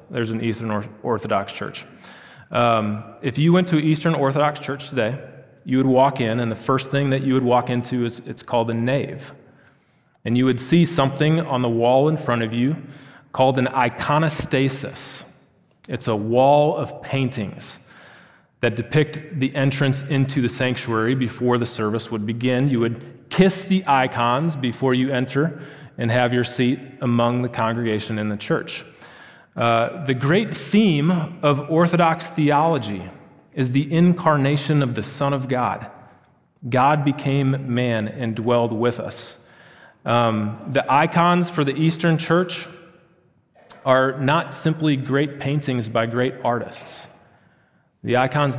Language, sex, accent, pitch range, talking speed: English, male, American, 120-145 Hz, 150 wpm